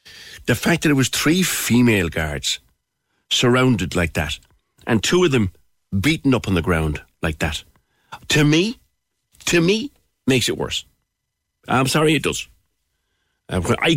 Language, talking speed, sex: English, 145 wpm, male